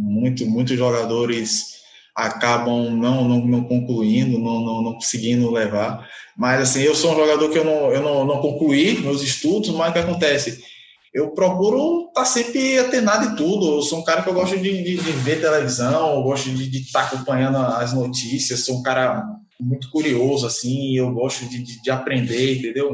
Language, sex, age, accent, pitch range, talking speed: Portuguese, male, 20-39, Brazilian, 130-175 Hz, 190 wpm